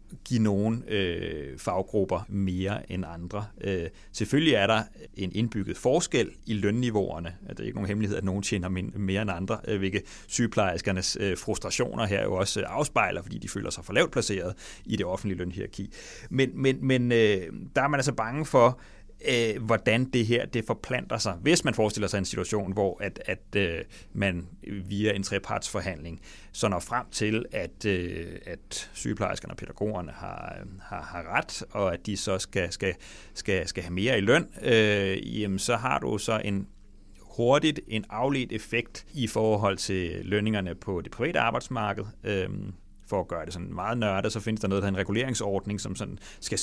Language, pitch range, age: English, 95-110 Hz, 30-49